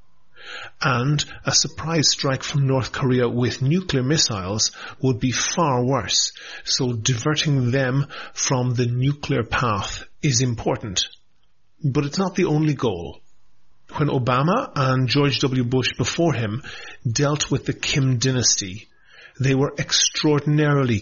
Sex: male